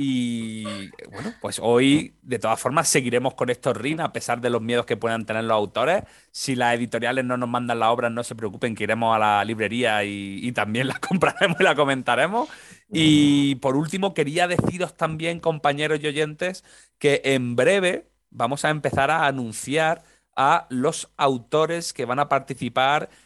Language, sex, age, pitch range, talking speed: Spanish, male, 30-49, 120-155 Hz, 180 wpm